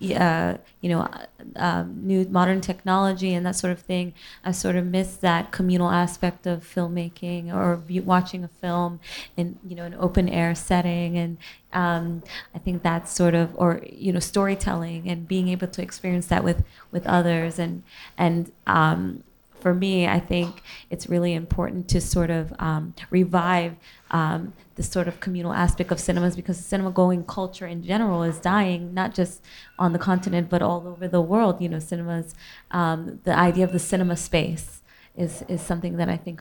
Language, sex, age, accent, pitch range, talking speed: English, female, 20-39, American, 170-180 Hz, 185 wpm